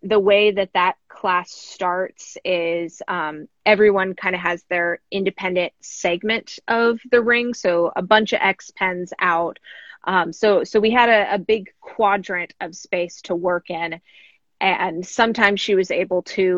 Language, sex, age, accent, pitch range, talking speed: English, female, 20-39, American, 170-205 Hz, 165 wpm